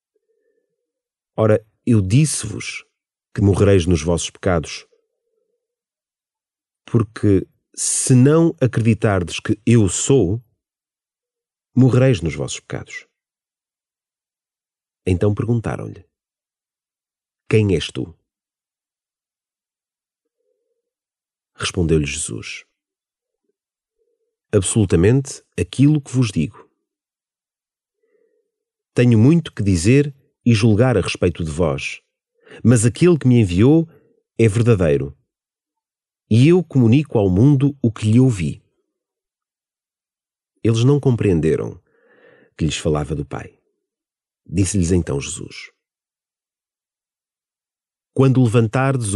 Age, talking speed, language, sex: 40-59, 85 wpm, Portuguese, male